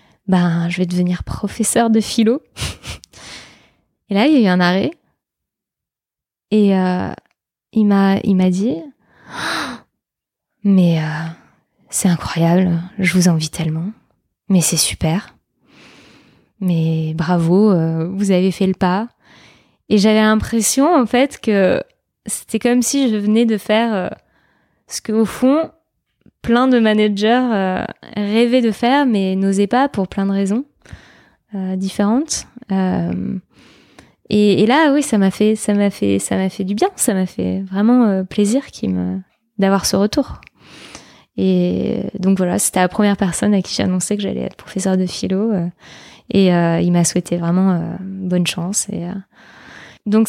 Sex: female